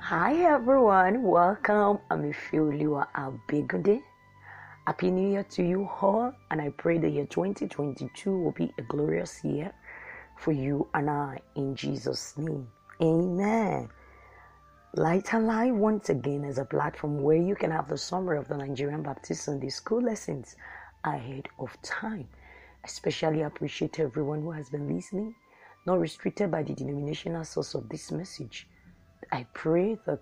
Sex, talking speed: female, 155 wpm